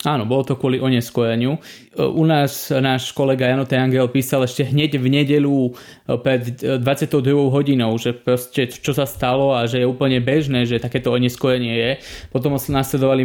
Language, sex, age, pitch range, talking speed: Slovak, male, 20-39, 125-140 Hz, 165 wpm